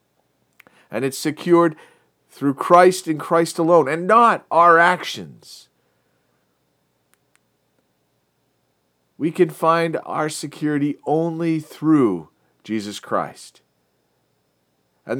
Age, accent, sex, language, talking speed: 40-59, American, male, English, 85 wpm